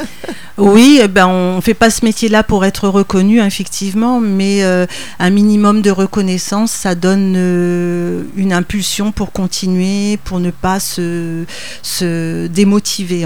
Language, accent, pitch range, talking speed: French, French, 180-210 Hz, 140 wpm